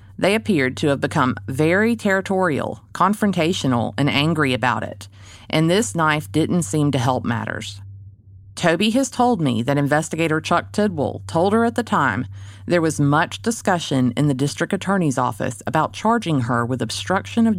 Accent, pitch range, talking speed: American, 125-180 Hz, 165 wpm